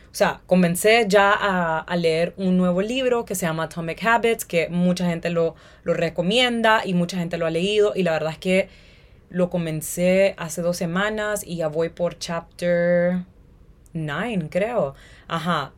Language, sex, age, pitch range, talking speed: Spanish, female, 20-39, 170-195 Hz, 170 wpm